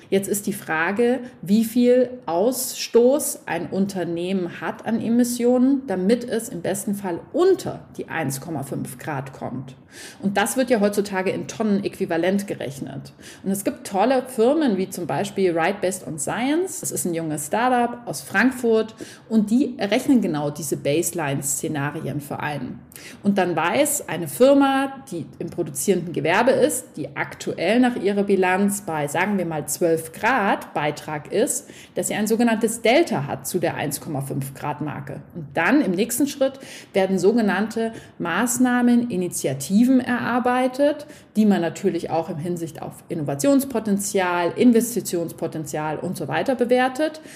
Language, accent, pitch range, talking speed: German, German, 175-245 Hz, 145 wpm